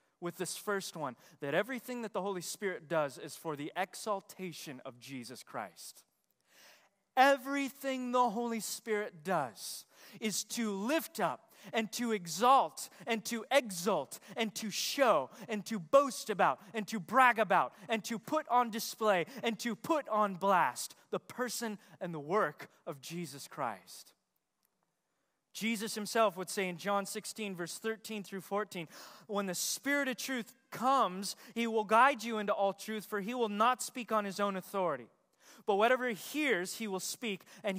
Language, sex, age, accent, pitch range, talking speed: English, male, 20-39, American, 190-235 Hz, 165 wpm